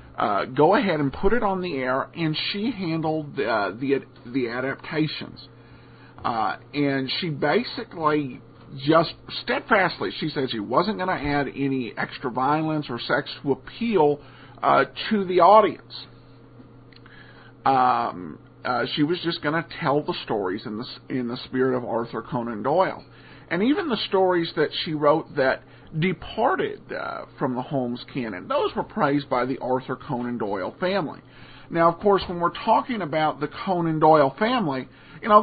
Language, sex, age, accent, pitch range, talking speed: English, male, 50-69, American, 130-170 Hz, 160 wpm